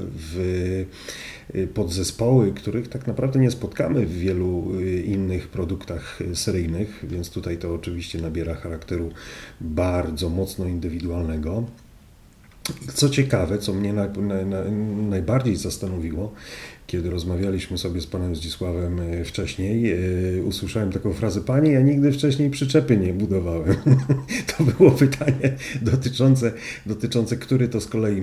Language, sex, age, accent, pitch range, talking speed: Polish, male, 40-59, native, 85-110 Hz, 115 wpm